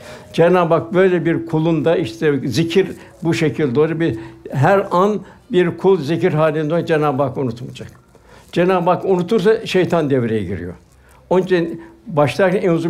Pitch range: 140-175 Hz